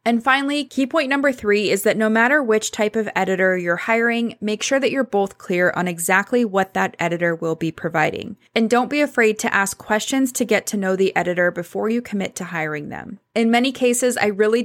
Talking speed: 220 wpm